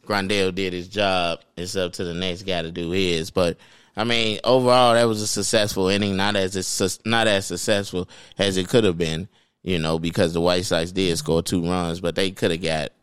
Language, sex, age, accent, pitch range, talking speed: English, male, 20-39, American, 90-105 Hz, 220 wpm